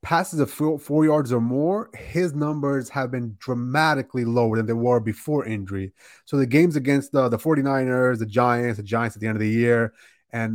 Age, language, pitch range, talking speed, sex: 30-49, English, 120-150 Hz, 205 wpm, male